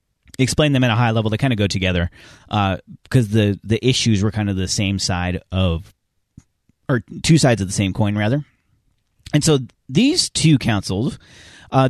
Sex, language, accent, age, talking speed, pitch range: male, English, American, 30-49, 185 wpm, 105-145 Hz